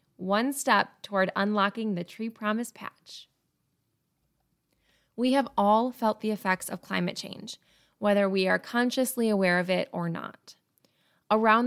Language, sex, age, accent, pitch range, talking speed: English, female, 20-39, American, 195-235 Hz, 140 wpm